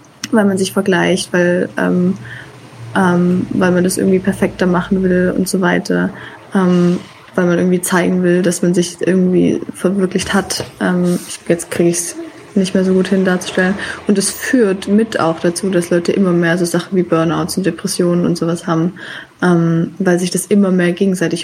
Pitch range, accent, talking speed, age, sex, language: 180-205 Hz, German, 180 wpm, 20-39, female, German